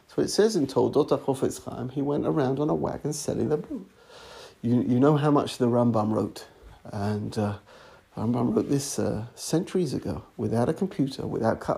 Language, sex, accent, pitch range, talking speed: English, male, British, 125-155 Hz, 190 wpm